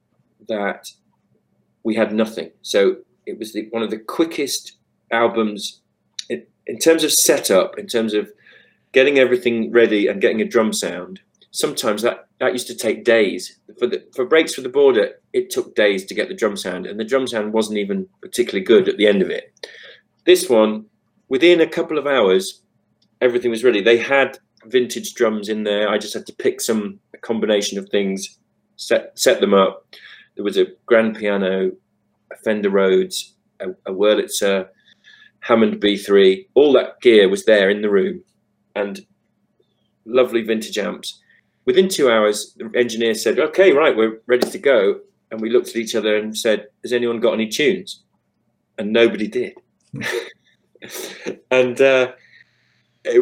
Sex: male